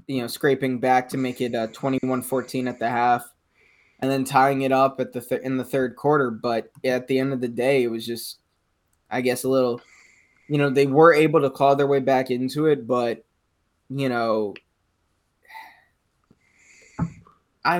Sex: male